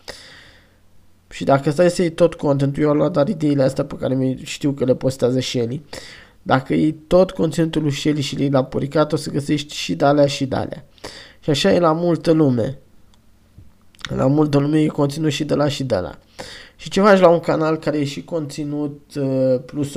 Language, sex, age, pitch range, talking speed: Romanian, male, 20-39, 135-155 Hz, 190 wpm